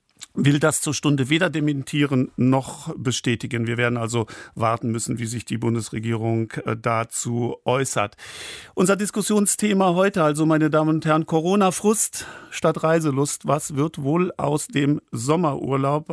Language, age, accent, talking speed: German, 50-69, German, 135 wpm